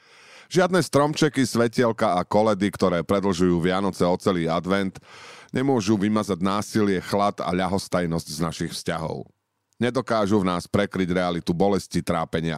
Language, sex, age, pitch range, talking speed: Slovak, male, 40-59, 90-120 Hz, 130 wpm